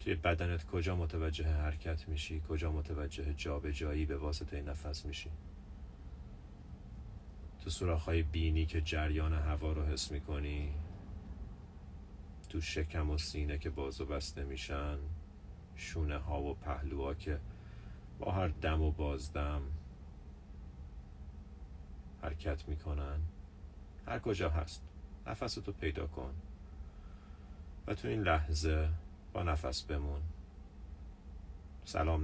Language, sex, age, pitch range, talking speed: Persian, male, 40-59, 70-80 Hz, 110 wpm